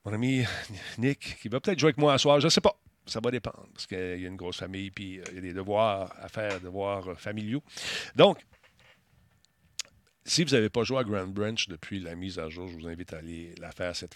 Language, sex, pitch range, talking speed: French, male, 100-125 Hz, 240 wpm